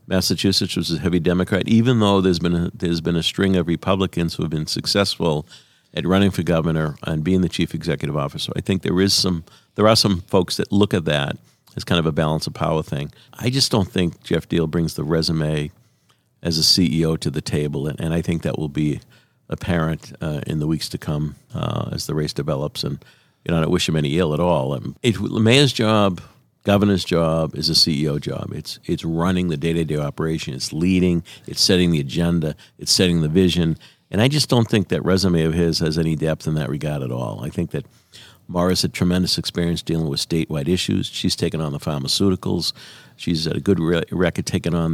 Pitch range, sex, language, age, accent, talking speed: 80-95 Hz, male, English, 50-69, American, 215 wpm